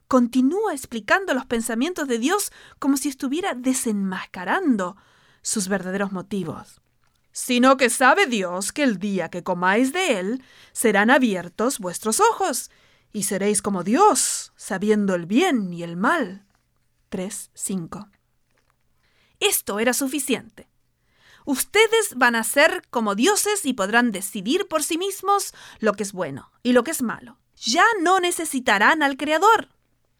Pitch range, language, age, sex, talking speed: 200-300 Hz, Spanish, 40-59, female, 135 wpm